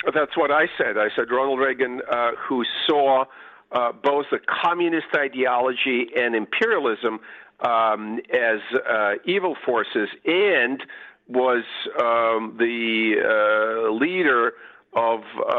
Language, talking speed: English, 120 wpm